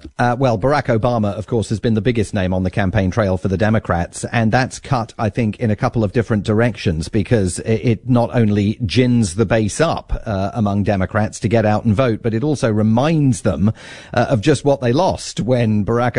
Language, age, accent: English, 40-59, British